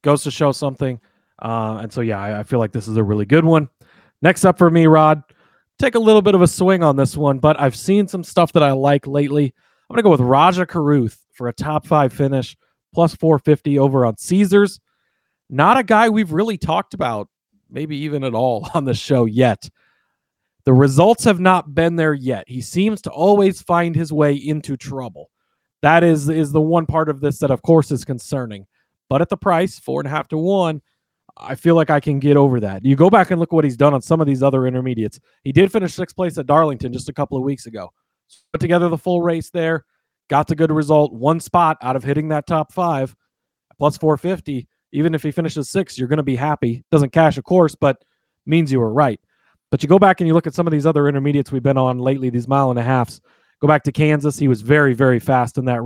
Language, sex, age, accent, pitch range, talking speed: English, male, 30-49, American, 130-170 Hz, 235 wpm